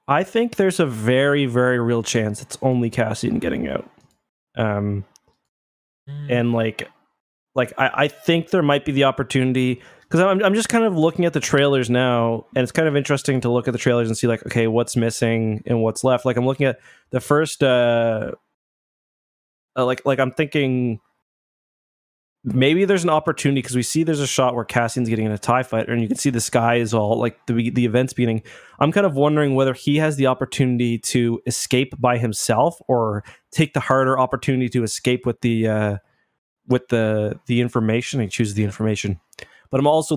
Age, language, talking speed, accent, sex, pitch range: 20-39, English, 195 wpm, American, male, 115-135 Hz